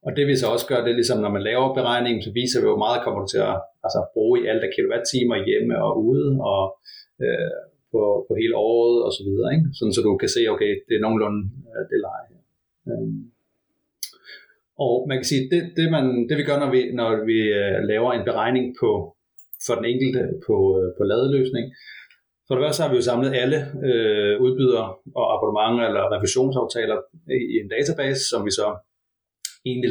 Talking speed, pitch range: 195 wpm, 120-180 Hz